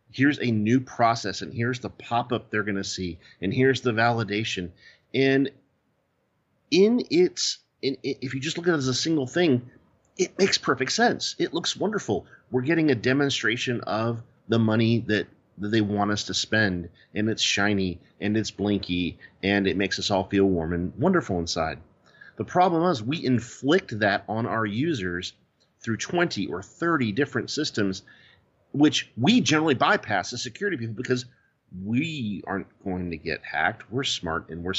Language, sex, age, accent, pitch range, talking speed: English, male, 40-59, American, 105-135 Hz, 170 wpm